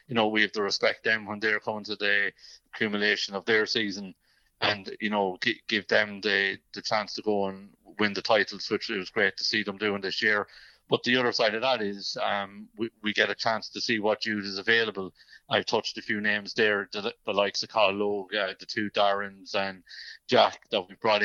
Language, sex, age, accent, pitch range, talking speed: English, male, 30-49, Irish, 100-110 Hz, 225 wpm